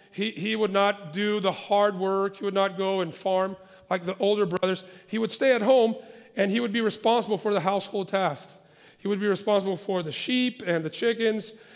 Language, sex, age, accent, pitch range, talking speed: English, male, 40-59, American, 190-230 Hz, 215 wpm